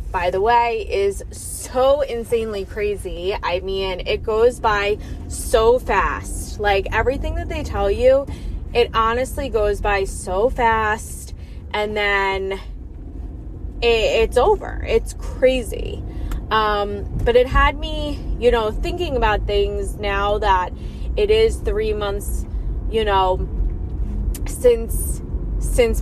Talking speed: 120 wpm